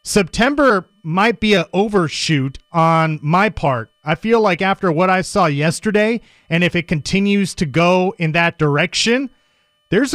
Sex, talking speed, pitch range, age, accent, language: male, 155 wpm, 165-205 Hz, 30-49, American, English